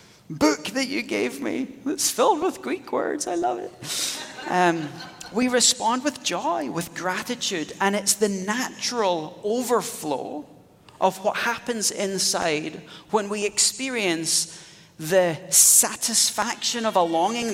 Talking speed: 125 wpm